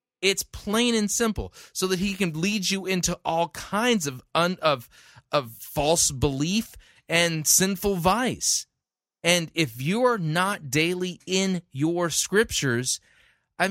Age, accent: 30-49, American